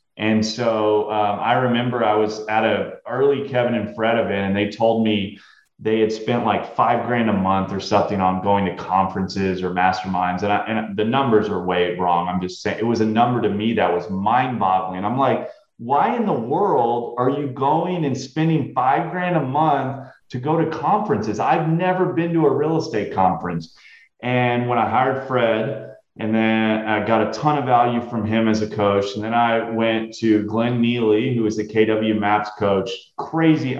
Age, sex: 30-49, male